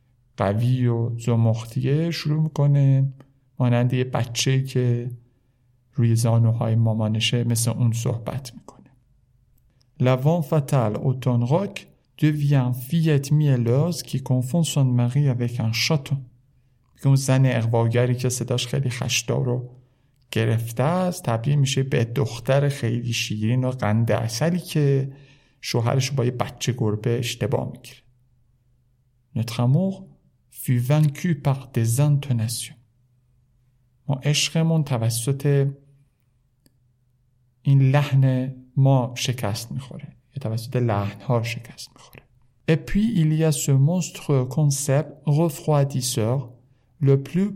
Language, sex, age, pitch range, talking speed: Persian, male, 50-69, 120-140 Hz, 95 wpm